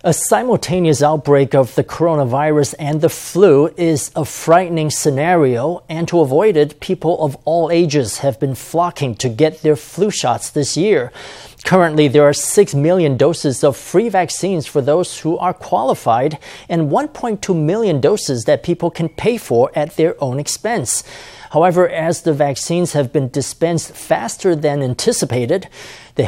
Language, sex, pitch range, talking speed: English, male, 145-175 Hz, 160 wpm